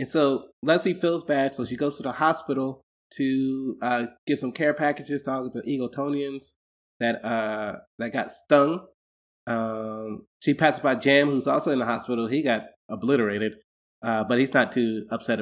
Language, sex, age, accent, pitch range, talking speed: English, male, 20-39, American, 115-145 Hz, 175 wpm